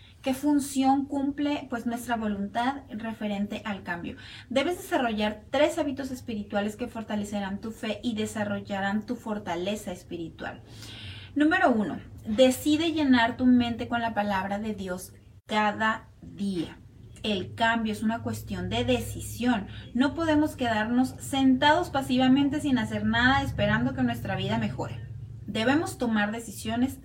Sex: female